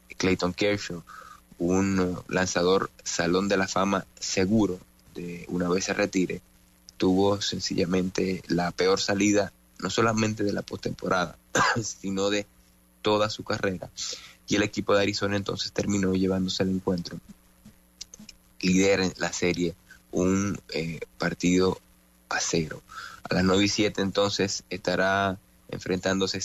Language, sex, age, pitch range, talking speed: English, male, 30-49, 90-100 Hz, 125 wpm